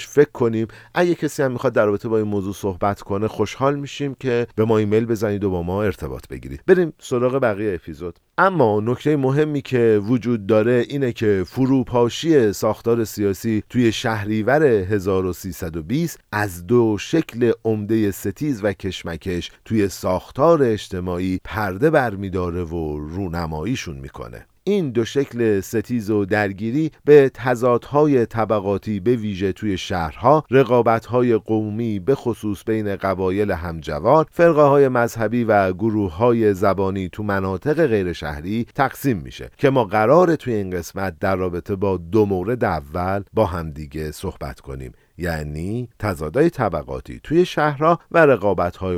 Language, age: Persian, 50-69